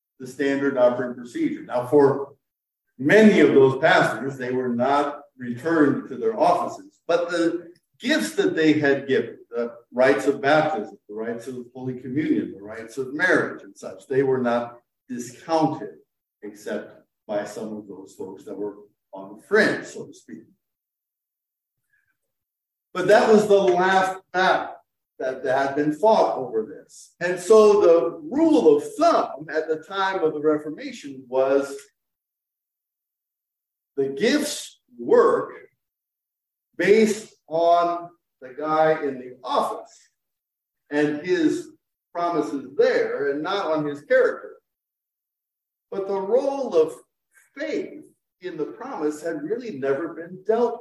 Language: English